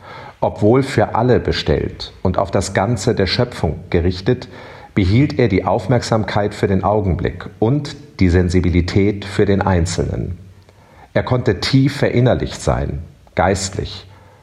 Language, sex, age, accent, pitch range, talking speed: German, male, 50-69, German, 90-115 Hz, 125 wpm